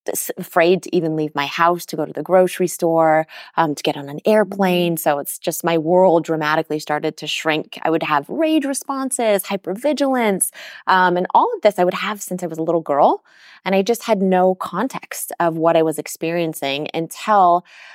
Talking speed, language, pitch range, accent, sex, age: 195 wpm, English, 155-180 Hz, American, female, 20-39